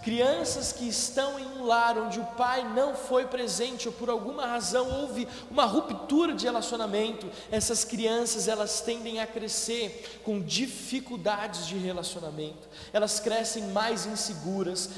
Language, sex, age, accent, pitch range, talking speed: Portuguese, male, 20-39, Brazilian, 200-245 Hz, 140 wpm